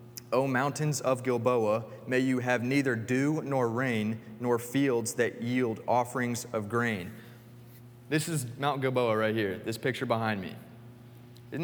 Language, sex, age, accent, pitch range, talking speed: English, male, 30-49, American, 120-140 Hz, 150 wpm